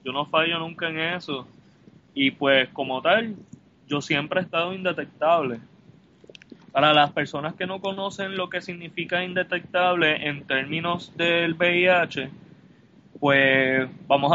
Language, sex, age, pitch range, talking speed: Spanish, male, 20-39, 140-180 Hz, 130 wpm